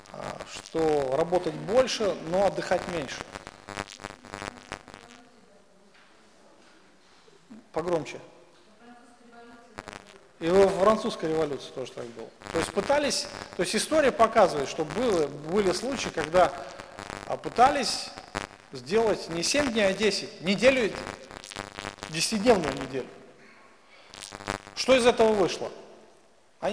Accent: native